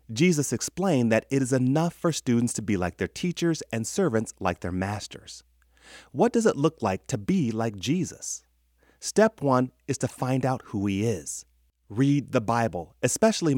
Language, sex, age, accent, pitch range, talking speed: English, male, 30-49, American, 100-150 Hz, 175 wpm